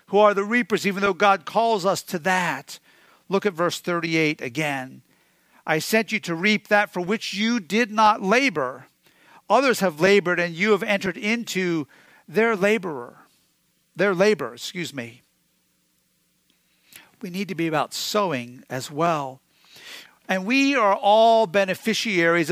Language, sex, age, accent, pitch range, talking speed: English, male, 50-69, American, 170-230 Hz, 145 wpm